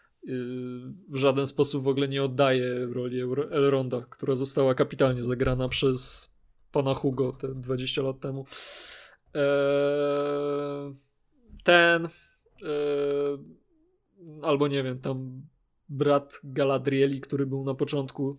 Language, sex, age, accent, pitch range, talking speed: Polish, male, 20-39, native, 135-145 Hz, 110 wpm